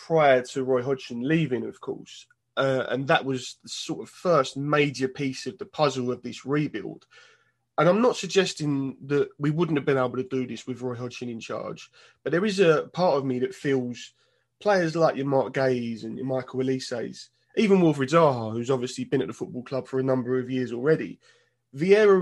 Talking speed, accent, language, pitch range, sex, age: 205 wpm, British, English, 130-155 Hz, male, 20-39